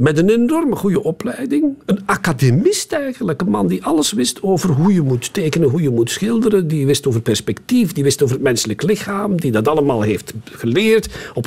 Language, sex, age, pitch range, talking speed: Dutch, male, 50-69, 140-210 Hz, 200 wpm